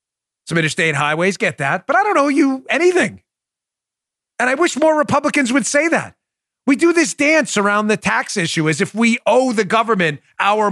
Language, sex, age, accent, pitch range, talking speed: English, male, 40-59, American, 165-270 Hz, 190 wpm